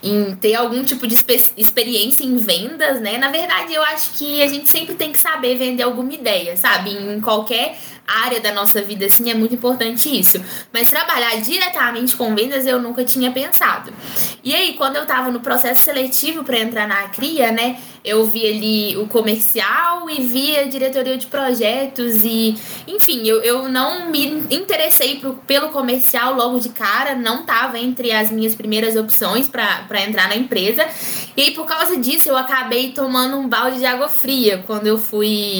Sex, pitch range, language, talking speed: female, 225-280 Hz, Portuguese, 185 wpm